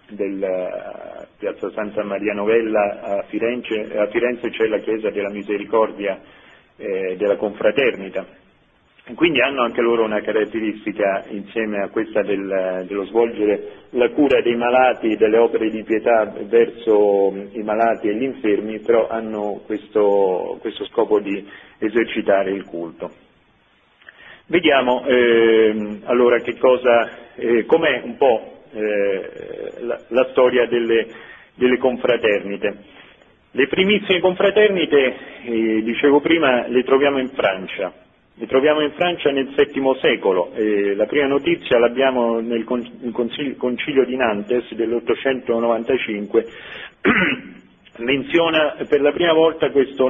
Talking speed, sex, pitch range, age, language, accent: 120 wpm, male, 110-145 Hz, 40-59, Italian, native